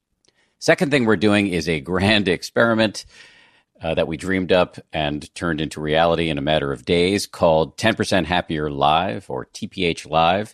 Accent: American